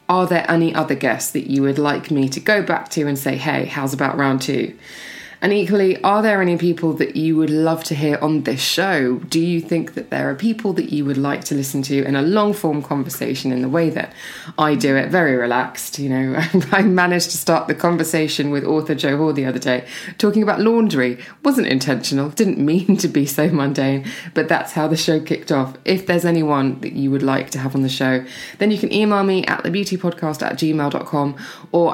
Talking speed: 220 wpm